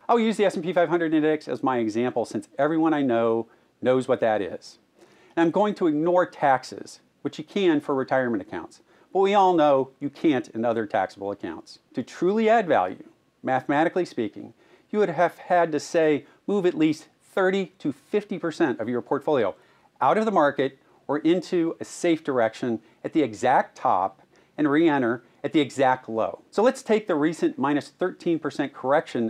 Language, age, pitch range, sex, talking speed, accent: English, 40-59, 135-190 Hz, male, 180 wpm, American